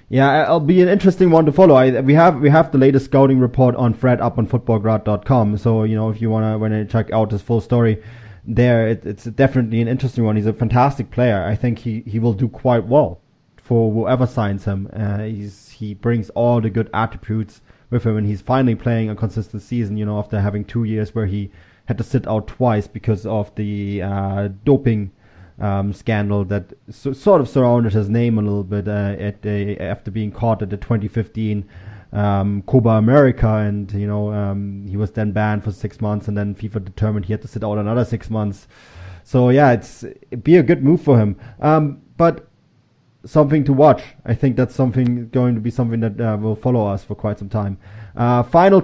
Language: English